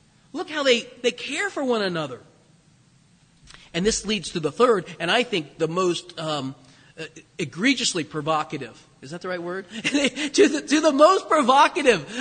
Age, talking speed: 40-59, 160 wpm